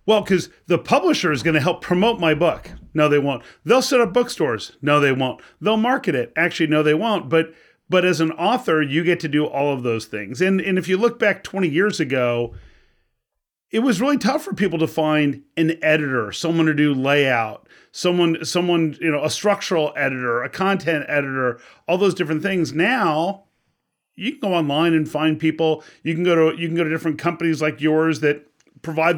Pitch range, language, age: 155-190 Hz, English, 40-59